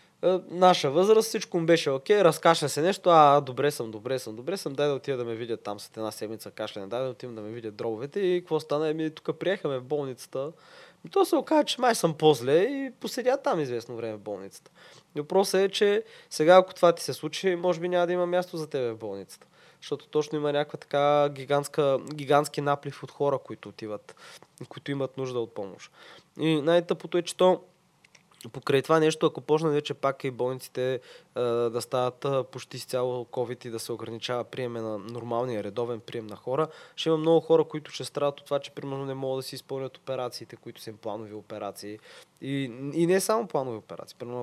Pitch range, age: 120-160 Hz, 20-39